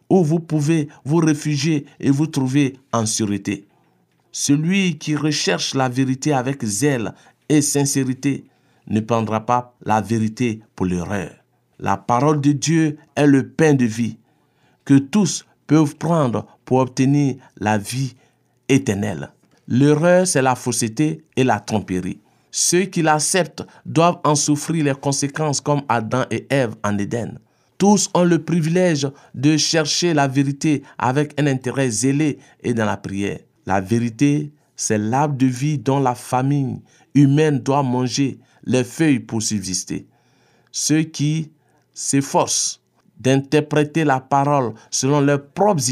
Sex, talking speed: male, 140 wpm